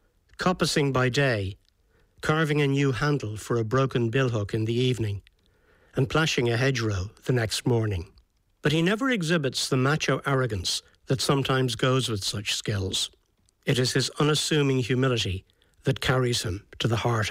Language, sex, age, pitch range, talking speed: English, male, 60-79, 105-145 Hz, 155 wpm